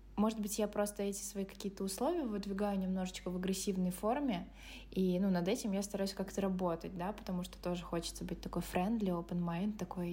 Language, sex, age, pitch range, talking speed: Russian, female, 20-39, 190-230 Hz, 185 wpm